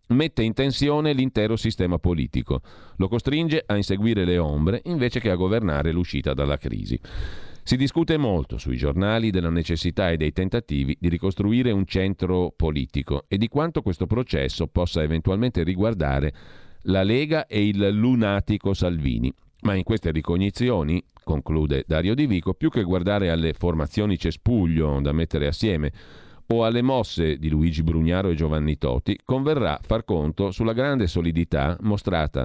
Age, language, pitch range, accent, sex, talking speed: 40-59, Italian, 80-110 Hz, native, male, 150 wpm